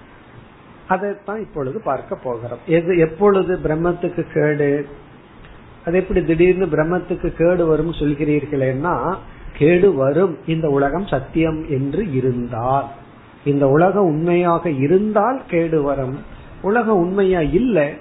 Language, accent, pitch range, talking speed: Tamil, native, 145-190 Hz, 85 wpm